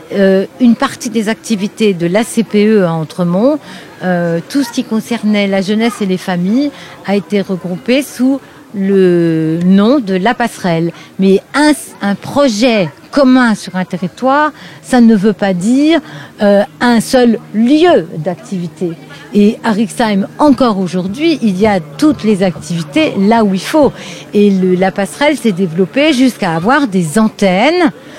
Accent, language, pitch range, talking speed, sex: French, French, 185-240 Hz, 150 wpm, female